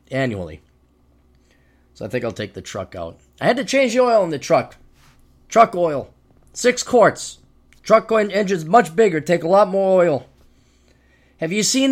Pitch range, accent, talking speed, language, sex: 140-225 Hz, American, 170 wpm, English, male